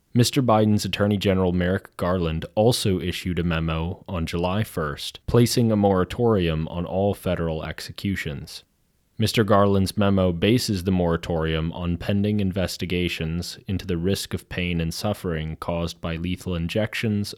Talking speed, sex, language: 140 wpm, male, English